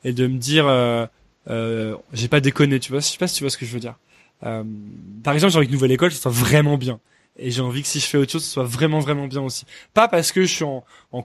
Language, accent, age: French, French, 20-39